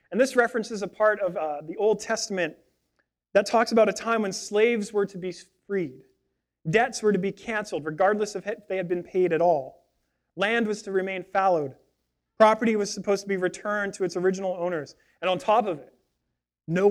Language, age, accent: English, 30-49, American